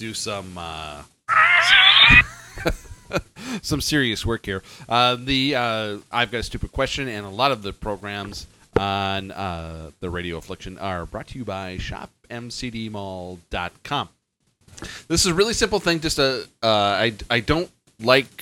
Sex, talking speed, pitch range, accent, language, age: male, 145 wpm, 100-125 Hz, American, English, 30-49